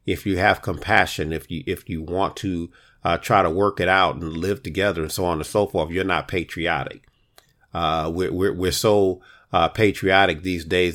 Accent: American